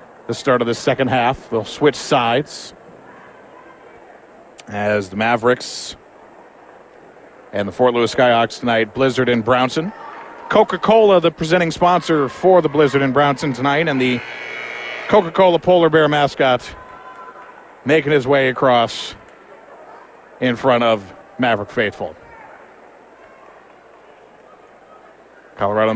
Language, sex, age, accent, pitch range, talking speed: English, male, 50-69, American, 125-150 Hz, 110 wpm